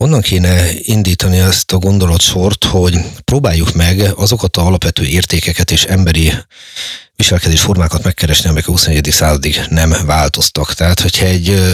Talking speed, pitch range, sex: 140 wpm, 80-95 Hz, male